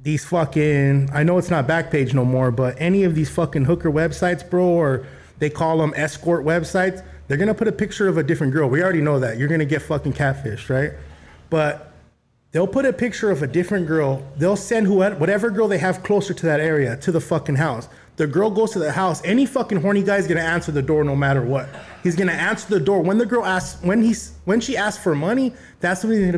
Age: 20-39